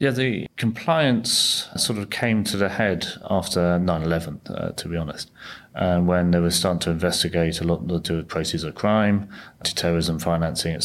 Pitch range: 85-100 Hz